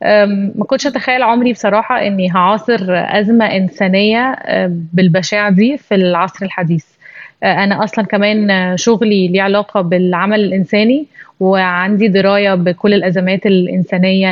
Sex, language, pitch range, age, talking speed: female, Arabic, 185-220 Hz, 20-39, 115 wpm